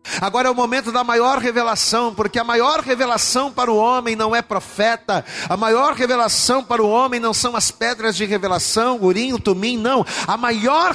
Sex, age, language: male, 40-59, Portuguese